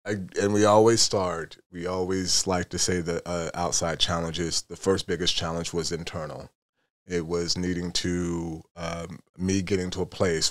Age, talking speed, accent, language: 30-49, 170 wpm, American, English